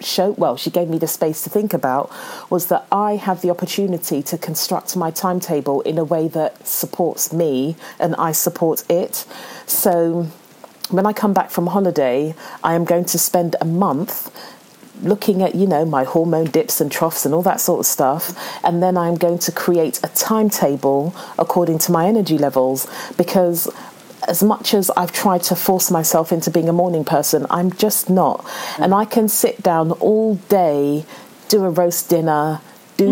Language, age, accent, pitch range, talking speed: English, 40-59, British, 165-200 Hz, 185 wpm